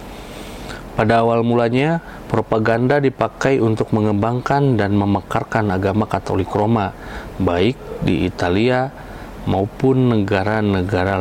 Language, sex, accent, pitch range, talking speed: Indonesian, male, native, 100-125 Hz, 90 wpm